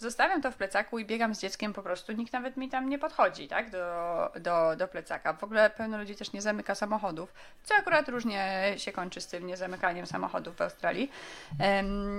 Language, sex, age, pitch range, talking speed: Polish, female, 20-39, 190-230 Hz, 200 wpm